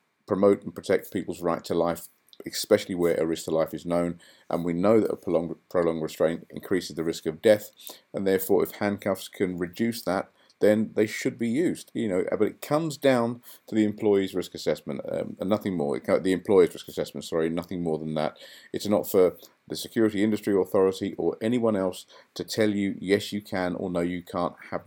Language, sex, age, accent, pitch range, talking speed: English, male, 50-69, British, 90-110 Hz, 205 wpm